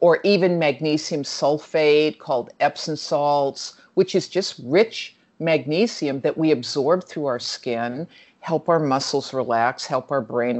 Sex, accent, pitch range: female, American, 145-195 Hz